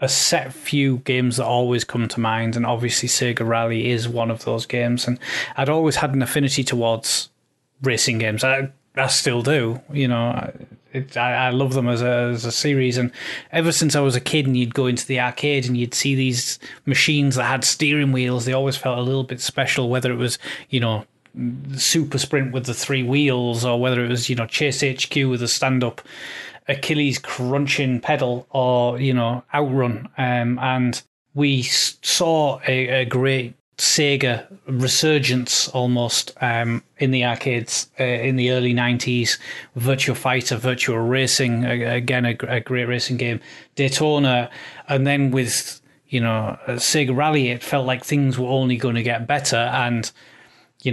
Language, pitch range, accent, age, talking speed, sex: English, 120-135 Hz, British, 30-49, 175 wpm, male